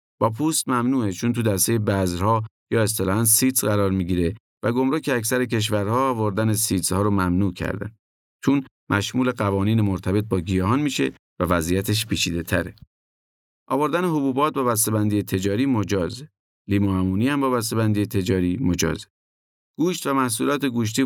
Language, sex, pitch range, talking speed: Persian, male, 95-120 Hz, 150 wpm